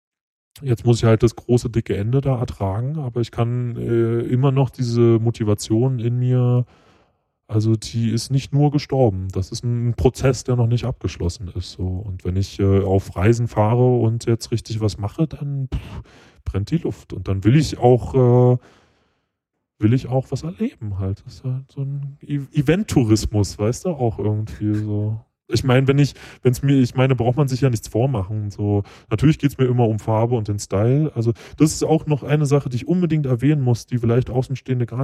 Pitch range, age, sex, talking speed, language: 105-135 Hz, 20-39, male, 200 wpm, German